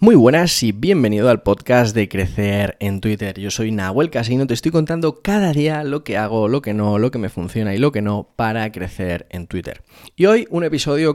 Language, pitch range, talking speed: Spanish, 105-135 Hz, 220 wpm